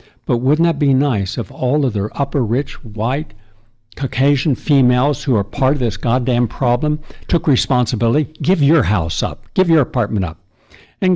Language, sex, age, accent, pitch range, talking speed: English, male, 60-79, American, 105-130 Hz, 165 wpm